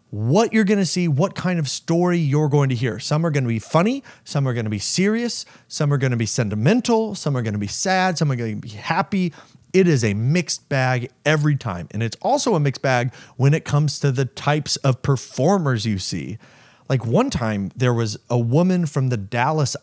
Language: English